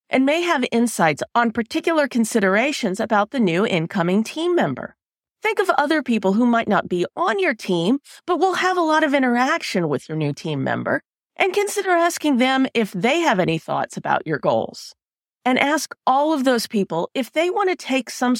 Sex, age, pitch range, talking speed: female, 40-59, 185-300 Hz, 195 wpm